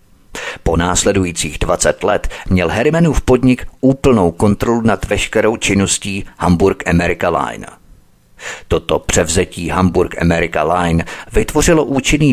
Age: 50-69